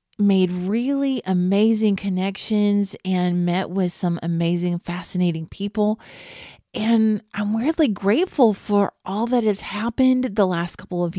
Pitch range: 185-235 Hz